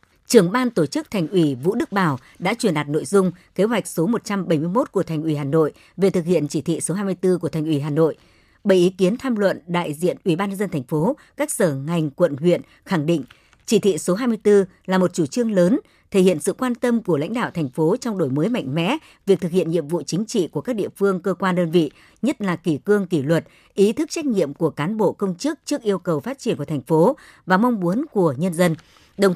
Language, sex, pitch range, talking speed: Vietnamese, male, 160-205 Hz, 255 wpm